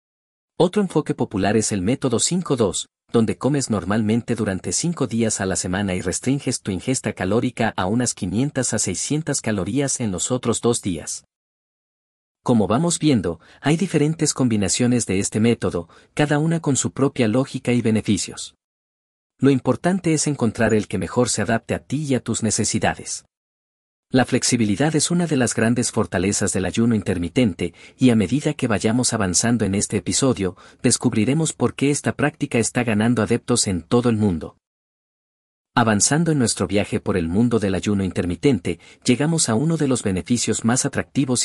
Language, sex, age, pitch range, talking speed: Spanish, male, 40-59, 100-130 Hz, 165 wpm